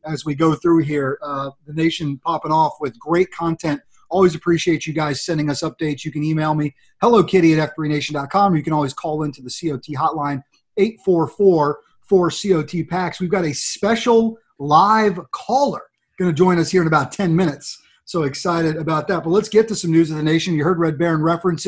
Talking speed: 200 wpm